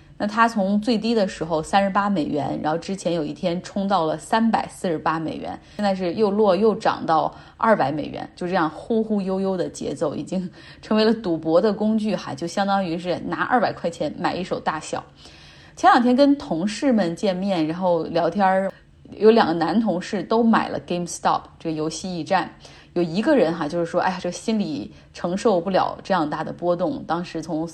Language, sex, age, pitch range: Chinese, female, 20-39, 165-210 Hz